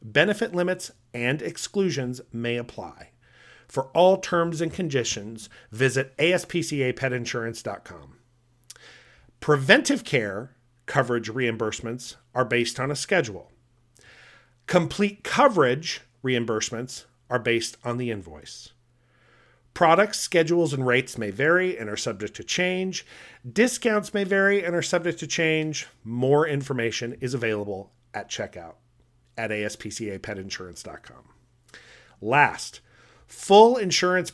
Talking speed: 105 wpm